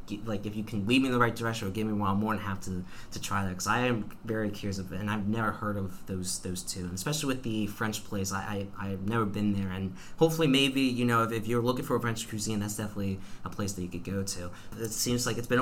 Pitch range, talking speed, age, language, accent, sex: 100-120 Hz, 290 wpm, 20-39, English, American, male